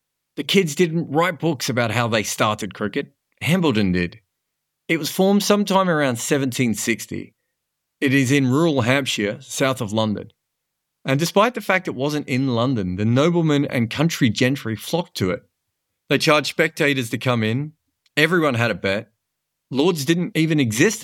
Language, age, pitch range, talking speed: English, 40-59, 110-145 Hz, 160 wpm